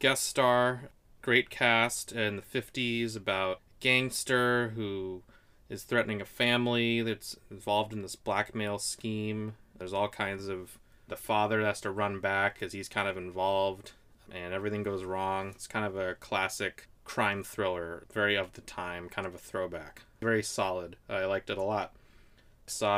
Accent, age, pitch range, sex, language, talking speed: American, 20-39, 105-125 Hz, male, English, 160 wpm